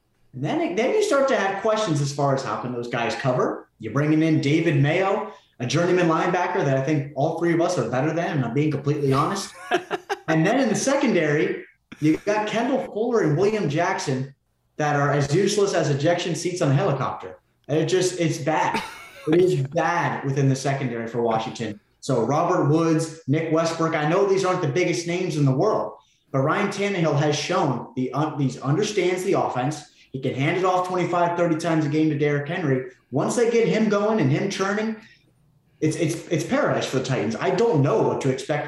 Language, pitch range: English, 140-180 Hz